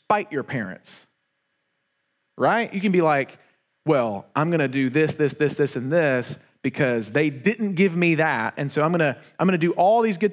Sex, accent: male, American